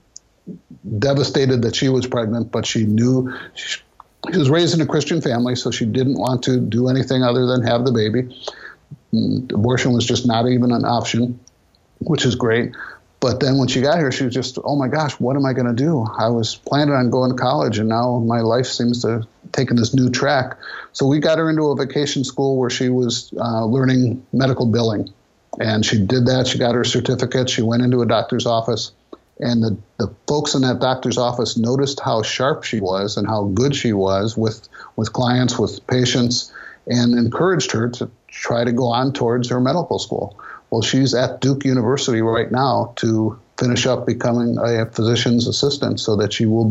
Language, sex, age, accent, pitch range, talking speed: English, male, 50-69, American, 115-130 Hz, 200 wpm